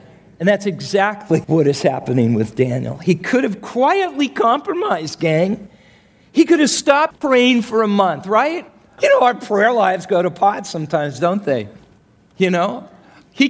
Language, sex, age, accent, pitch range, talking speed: English, male, 40-59, American, 130-205 Hz, 165 wpm